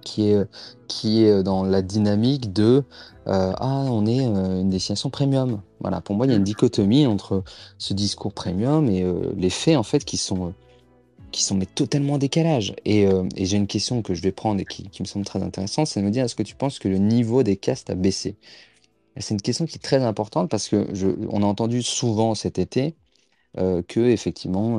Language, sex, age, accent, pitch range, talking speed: French, male, 30-49, French, 95-125 Hz, 225 wpm